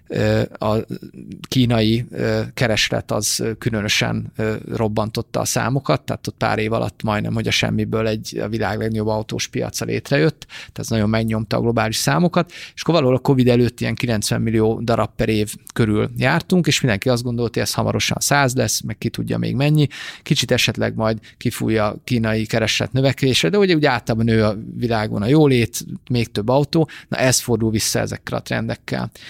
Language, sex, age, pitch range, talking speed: Hungarian, male, 30-49, 110-125 Hz, 175 wpm